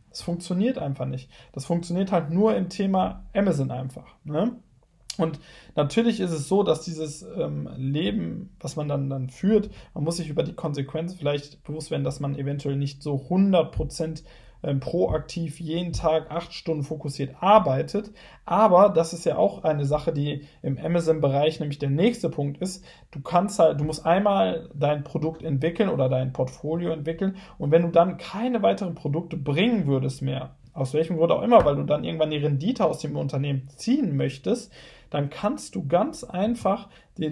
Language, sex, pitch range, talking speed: German, male, 140-175 Hz, 175 wpm